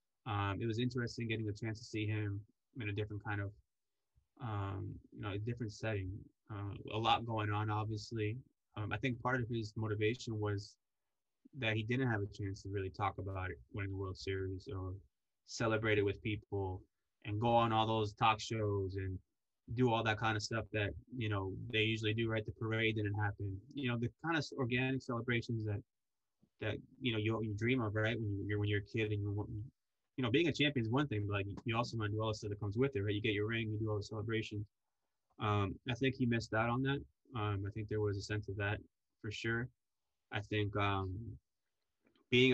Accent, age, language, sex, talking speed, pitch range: American, 20-39, English, male, 225 wpm, 100-115 Hz